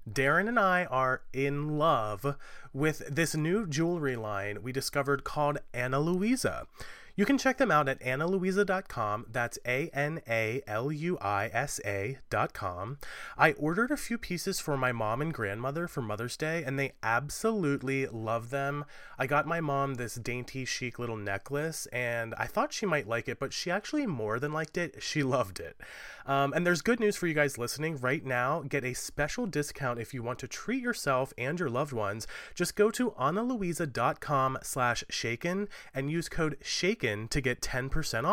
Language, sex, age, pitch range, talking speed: English, male, 30-49, 125-170 Hz, 170 wpm